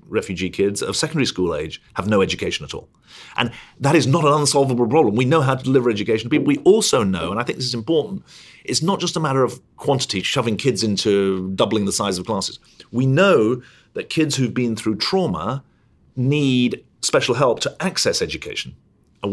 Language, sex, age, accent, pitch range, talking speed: English, male, 40-59, British, 105-135 Hz, 200 wpm